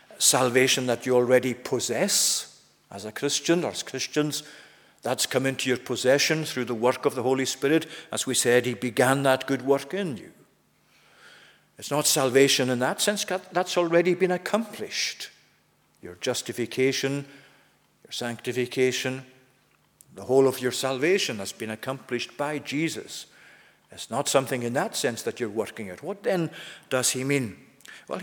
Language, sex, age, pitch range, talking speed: English, male, 50-69, 120-150 Hz, 155 wpm